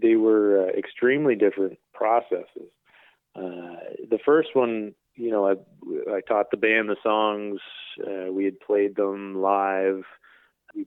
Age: 30-49